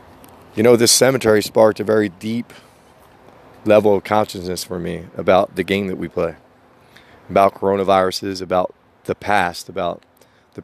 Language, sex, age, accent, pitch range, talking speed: English, male, 30-49, American, 95-120 Hz, 145 wpm